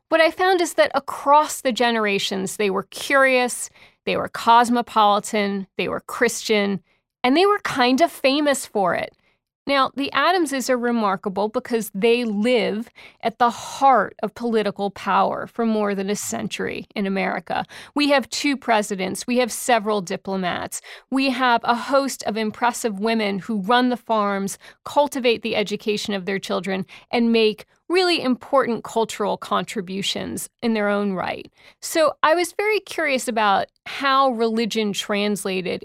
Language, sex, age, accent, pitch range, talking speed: English, female, 40-59, American, 205-270 Hz, 150 wpm